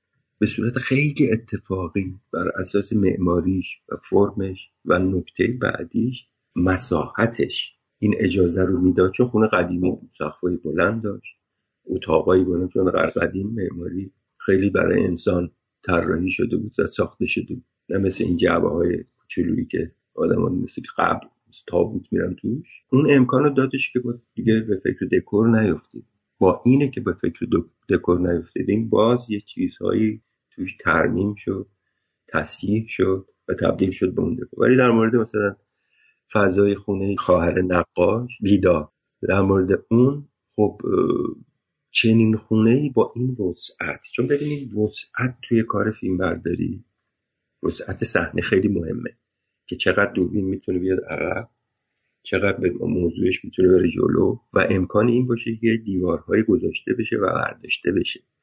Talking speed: 135 wpm